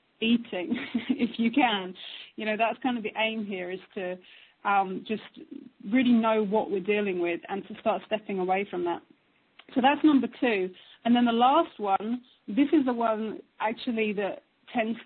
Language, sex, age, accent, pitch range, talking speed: English, female, 30-49, British, 195-240 Hz, 180 wpm